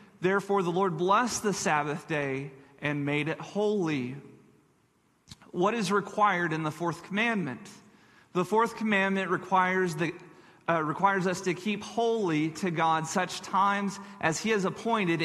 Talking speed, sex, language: 145 wpm, male, English